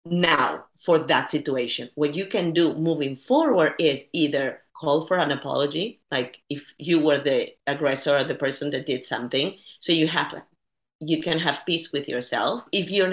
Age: 40-59